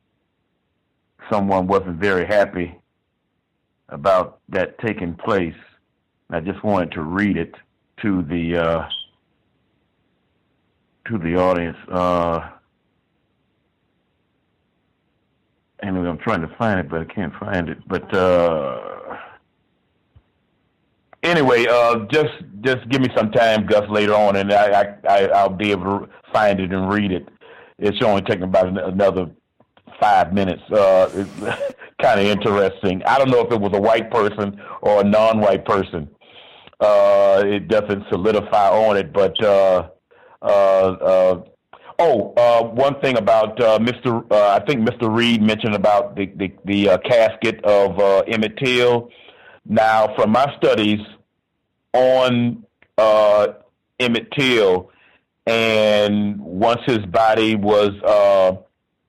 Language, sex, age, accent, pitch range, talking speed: English, male, 60-79, American, 95-110 Hz, 130 wpm